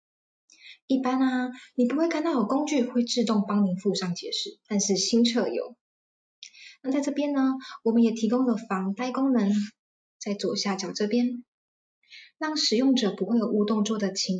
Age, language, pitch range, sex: 20-39, Chinese, 195-255 Hz, female